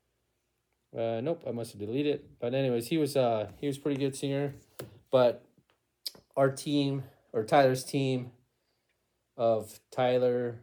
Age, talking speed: 20-39, 145 wpm